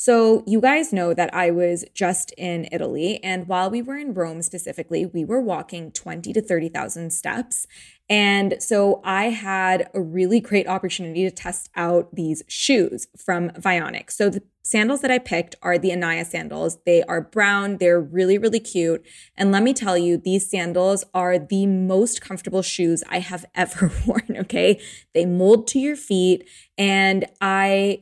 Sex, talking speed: female, 170 wpm